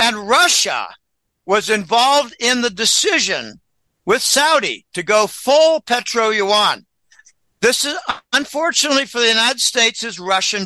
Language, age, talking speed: English, 60-79, 125 wpm